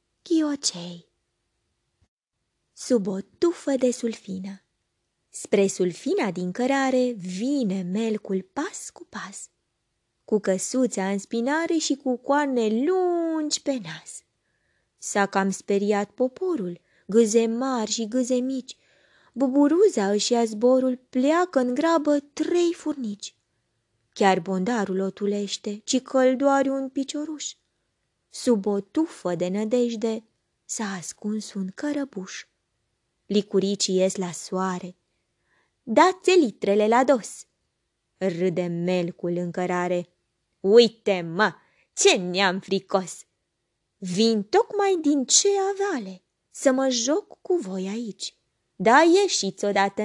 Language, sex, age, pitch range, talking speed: Romanian, female, 20-39, 190-270 Hz, 110 wpm